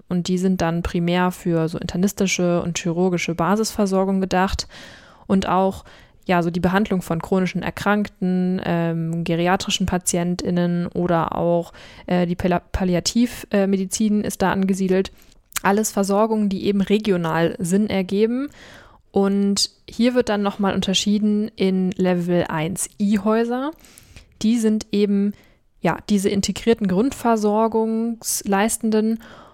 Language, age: German, 20-39